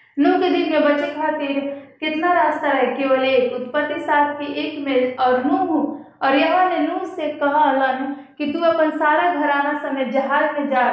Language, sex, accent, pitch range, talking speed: Hindi, female, native, 255-295 Hz, 165 wpm